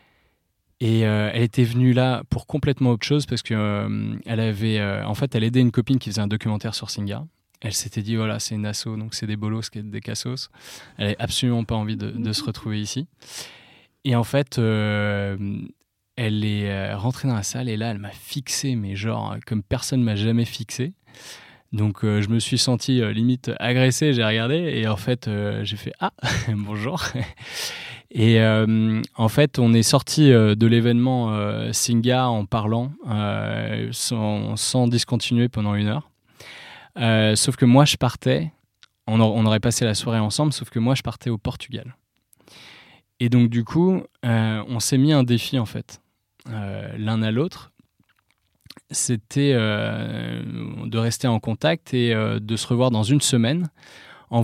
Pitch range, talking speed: 110-125 Hz, 185 wpm